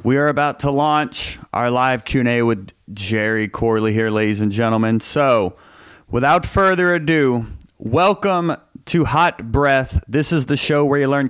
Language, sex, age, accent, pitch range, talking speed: English, male, 30-49, American, 115-155 Hz, 160 wpm